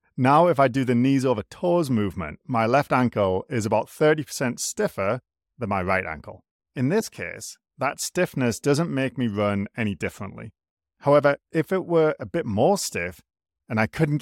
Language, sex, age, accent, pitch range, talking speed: English, male, 30-49, British, 105-155 Hz, 175 wpm